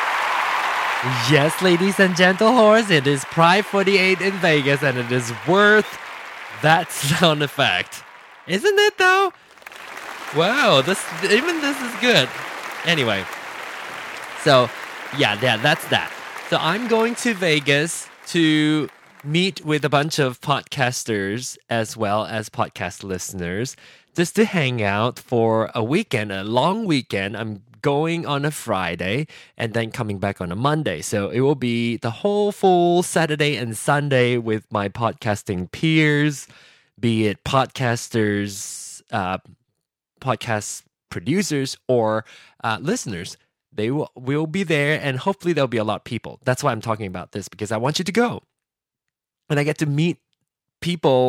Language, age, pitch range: English, 20-39, 110-165 Hz